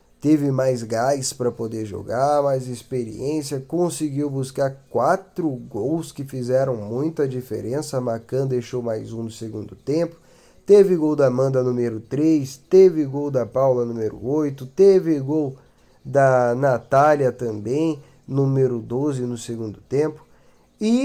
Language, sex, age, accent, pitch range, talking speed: Portuguese, male, 20-39, Brazilian, 115-150 Hz, 135 wpm